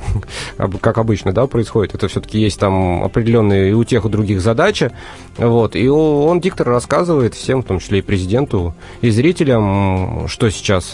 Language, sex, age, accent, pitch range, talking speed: Russian, male, 30-49, native, 95-120 Hz, 160 wpm